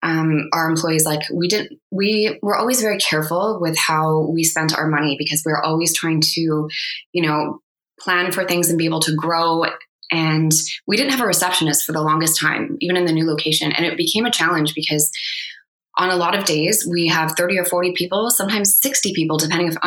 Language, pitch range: English, 155-180 Hz